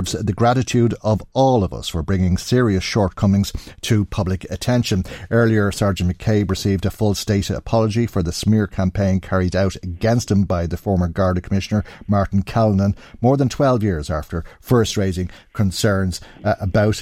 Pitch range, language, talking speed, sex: 90-105 Hz, English, 160 wpm, male